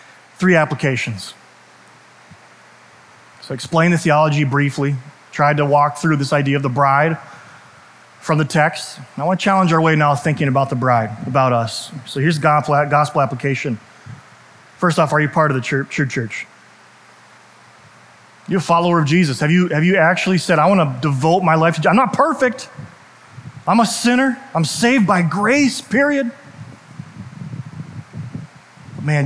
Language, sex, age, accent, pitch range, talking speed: English, male, 30-49, American, 140-165 Hz, 160 wpm